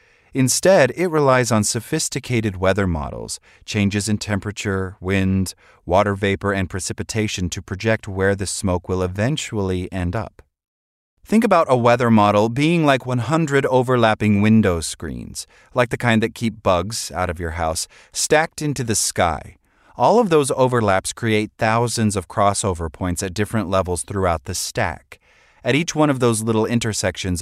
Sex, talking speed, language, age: male, 155 wpm, English, 30-49